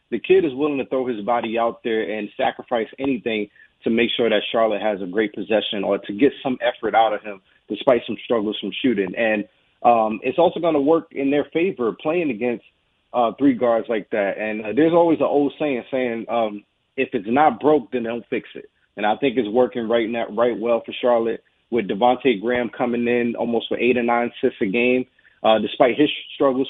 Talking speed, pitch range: 220 wpm, 115-135 Hz